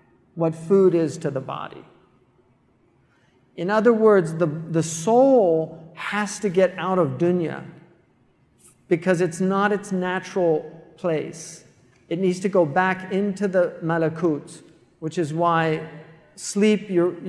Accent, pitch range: American, 165-195 Hz